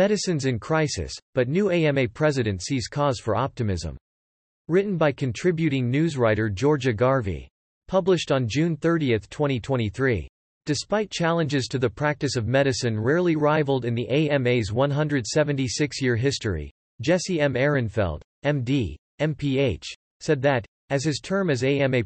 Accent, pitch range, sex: American, 115-155 Hz, male